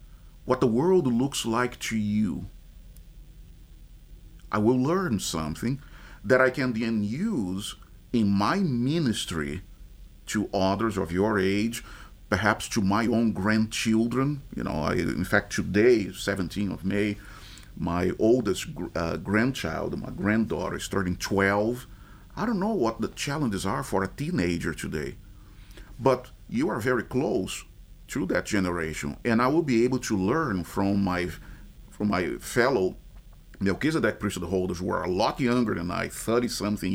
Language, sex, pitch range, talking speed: English, male, 95-125 Hz, 145 wpm